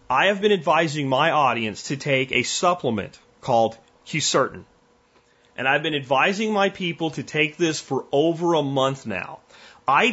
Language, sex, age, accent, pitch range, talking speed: English, male, 30-49, American, 140-195 Hz, 160 wpm